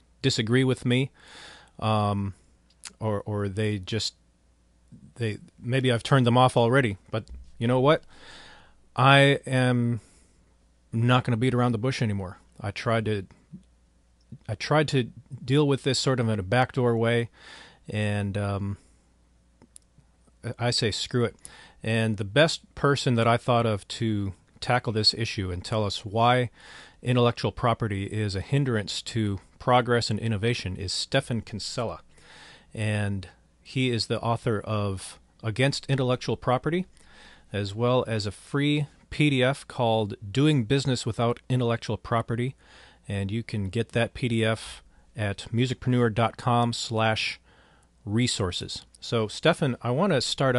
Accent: American